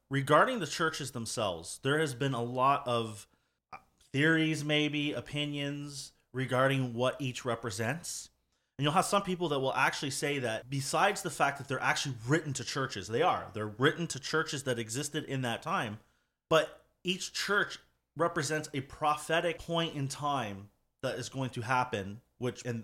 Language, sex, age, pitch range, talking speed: English, male, 30-49, 120-150 Hz, 165 wpm